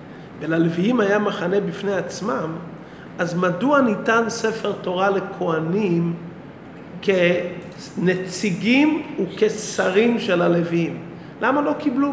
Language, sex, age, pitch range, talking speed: Hebrew, male, 40-59, 180-225 Hz, 90 wpm